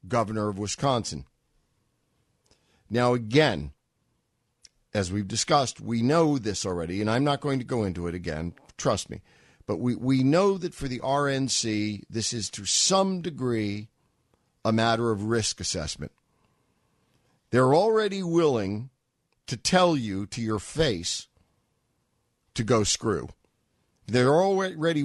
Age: 50-69